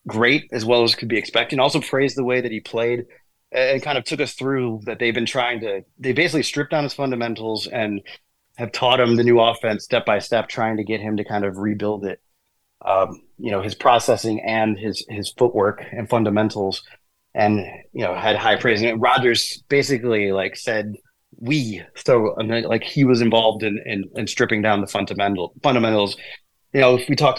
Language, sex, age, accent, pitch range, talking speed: English, male, 30-49, American, 105-125 Hz, 200 wpm